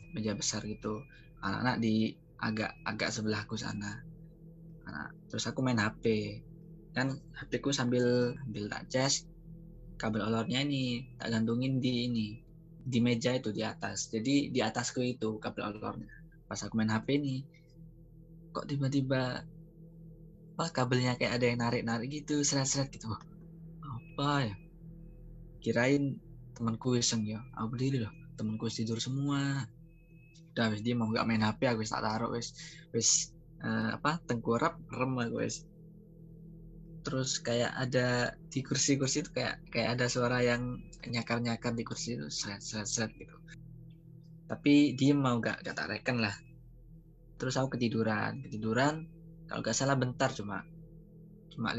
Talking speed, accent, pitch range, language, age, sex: 130 wpm, native, 115-160 Hz, Indonesian, 20-39, male